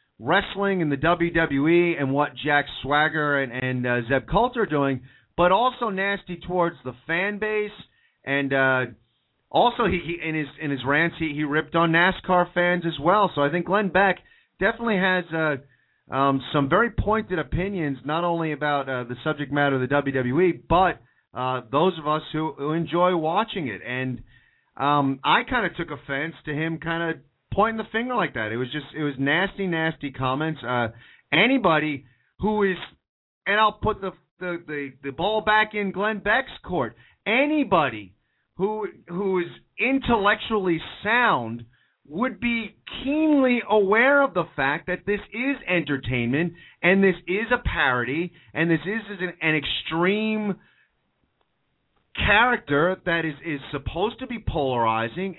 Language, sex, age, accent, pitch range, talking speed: English, male, 40-59, American, 140-200 Hz, 160 wpm